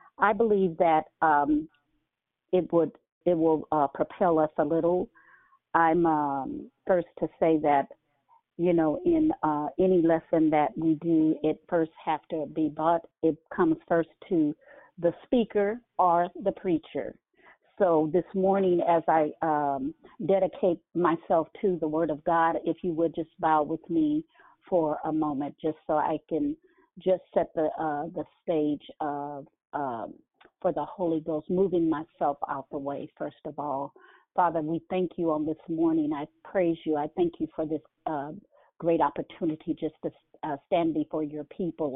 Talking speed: 165 wpm